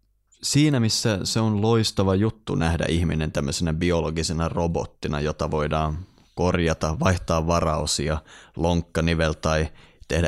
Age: 20-39